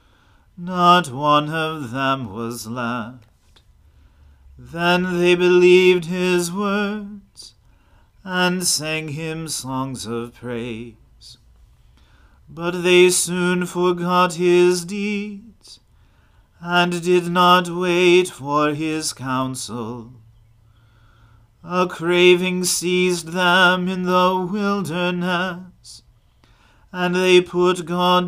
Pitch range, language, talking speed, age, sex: 120-180 Hz, English, 85 wpm, 40-59, male